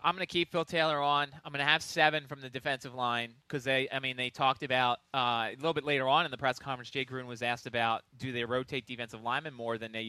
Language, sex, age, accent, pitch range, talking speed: English, male, 30-49, American, 120-155 Hz, 260 wpm